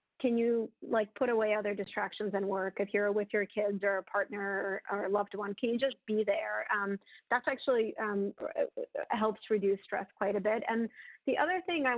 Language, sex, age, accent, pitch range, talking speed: English, female, 30-49, American, 200-235 Hz, 205 wpm